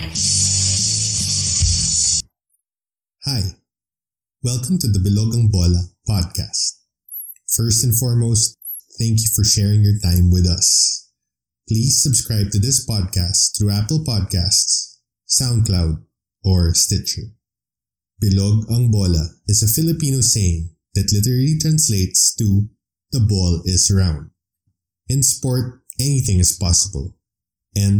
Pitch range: 90-110 Hz